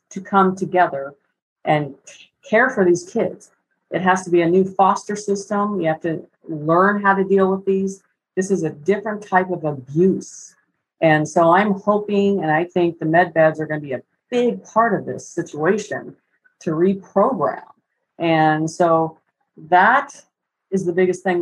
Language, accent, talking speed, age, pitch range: English, American, 170 wpm, 50-69, 165-205 Hz